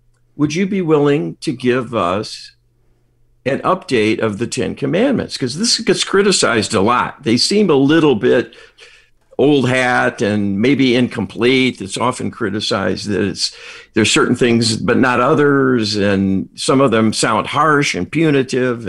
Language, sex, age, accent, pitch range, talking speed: English, male, 50-69, American, 120-150 Hz, 150 wpm